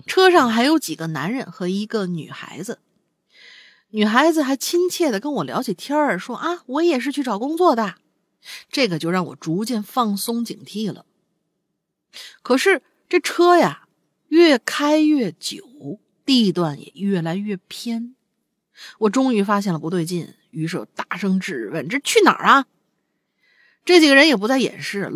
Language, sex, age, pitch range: Chinese, female, 50-69, 180-295 Hz